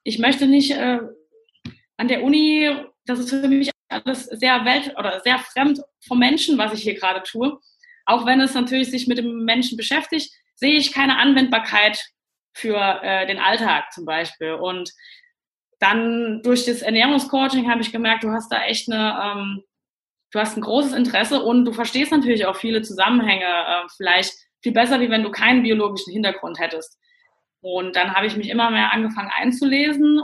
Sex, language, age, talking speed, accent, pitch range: female, German, 20-39, 180 wpm, German, 205-275 Hz